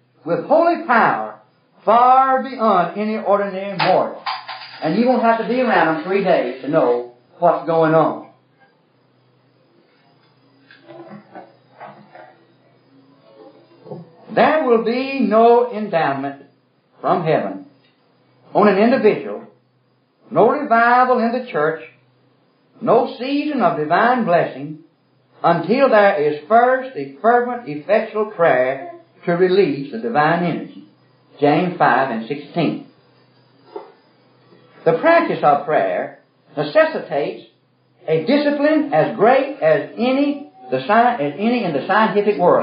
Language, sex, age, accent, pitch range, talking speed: English, male, 60-79, American, 165-265 Hz, 105 wpm